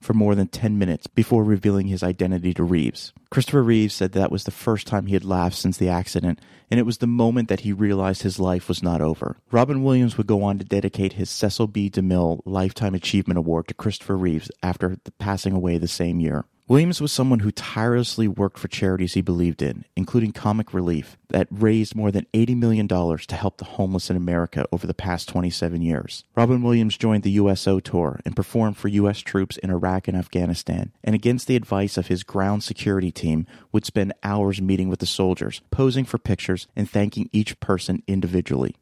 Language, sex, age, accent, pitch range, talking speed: English, male, 30-49, American, 90-110 Hz, 200 wpm